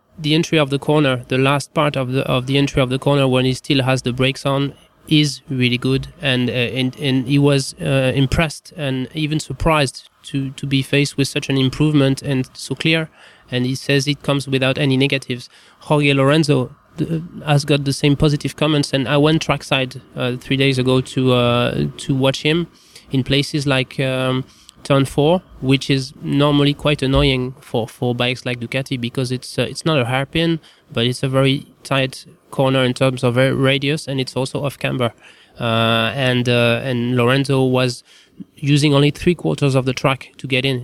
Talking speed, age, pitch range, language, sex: 195 wpm, 20-39, 130-145 Hz, English, male